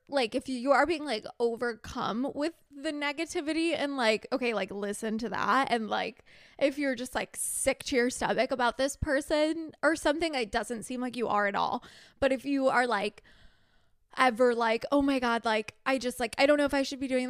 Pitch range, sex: 230-275 Hz, female